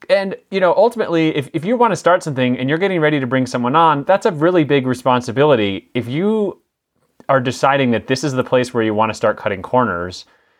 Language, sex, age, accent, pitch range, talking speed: English, male, 30-49, American, 110-150 Hz, 225 wpm